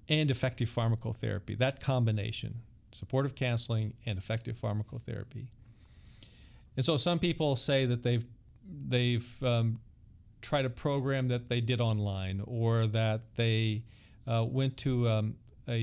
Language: English